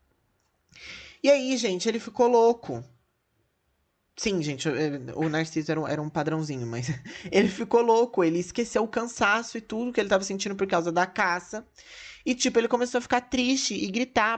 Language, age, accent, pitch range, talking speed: Portuguese, 20-39, Brazilian, 160-235 Hz, 165 wpm